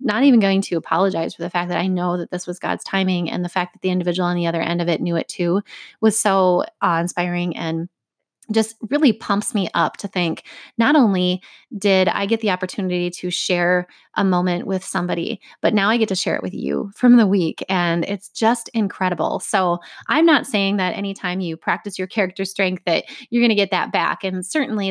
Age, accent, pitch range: 20-39, American, 180-225 Hz